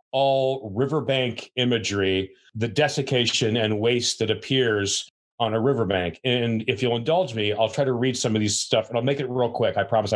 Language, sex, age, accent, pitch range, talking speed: English, male, 40-59, American, 105-130 Hz, 195 wpm